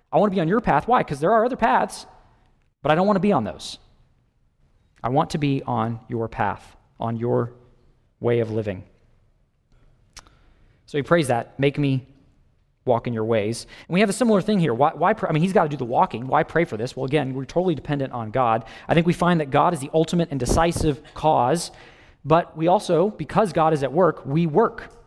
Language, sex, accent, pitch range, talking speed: English, male, American, 125-175 Hz, 225 wpm